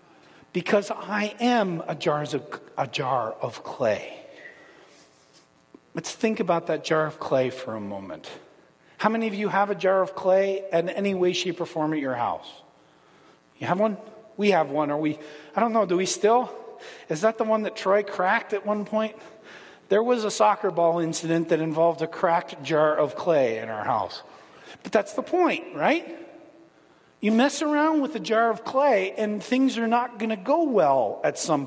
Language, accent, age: English, American, 40-59